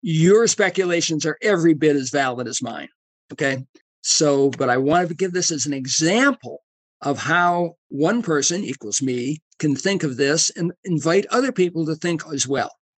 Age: 50-69